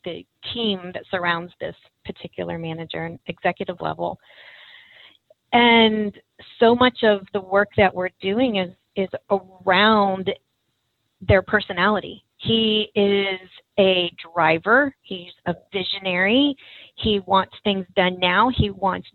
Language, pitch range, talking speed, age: English, 185-225 Hz, 120 wpm, 30-49